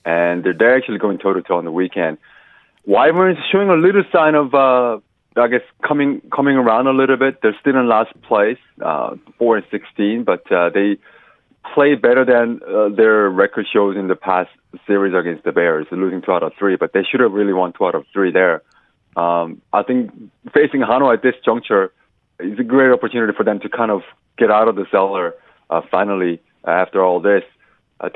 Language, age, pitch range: Korean, 30-49, 100-135 Hz